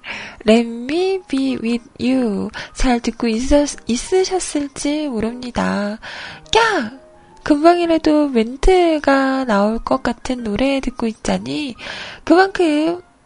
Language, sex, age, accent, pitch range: Korean, female, 20-39, native, 235-335 Hz